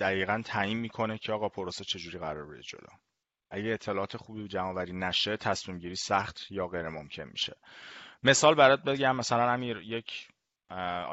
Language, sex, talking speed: Persian, male, 155 wpm